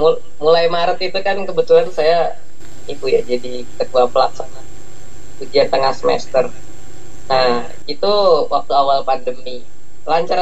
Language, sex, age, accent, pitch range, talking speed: Indonesian, female, 20-39, native, 125-185 Hz, 115 wpm